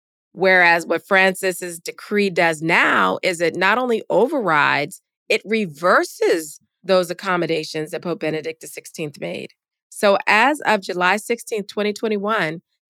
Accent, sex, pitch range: American, female, 170-215 Hz